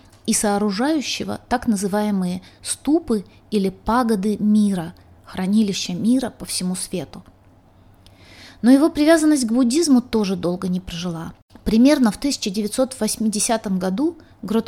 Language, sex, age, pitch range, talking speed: Russian, female, 20-39, 185-235 Hz, 100 wpm